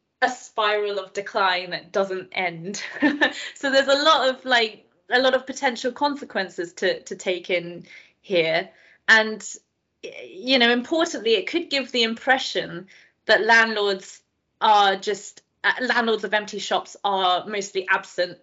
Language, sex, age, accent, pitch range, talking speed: English, female, 20-39, British, 180-230 Hz, 145 wpm